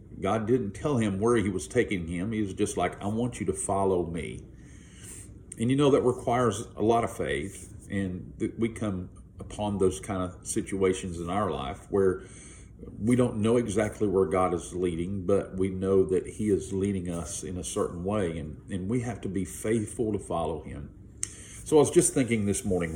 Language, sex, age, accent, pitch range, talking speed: English, male, 50-69, American, 95-110 Hz, 200 wpm